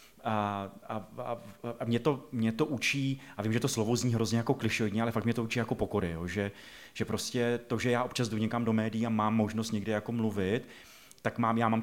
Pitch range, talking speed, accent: 110-125 Hz, 230 wpm, native